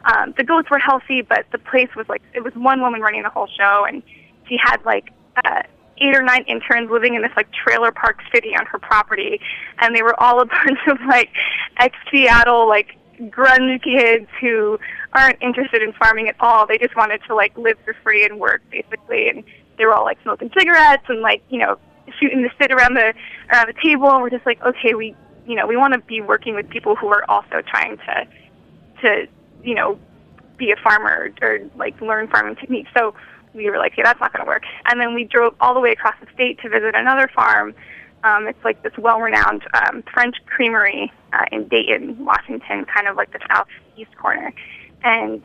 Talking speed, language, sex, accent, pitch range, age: 215 wpm, English, female, American, 225-270 Hz, 20-39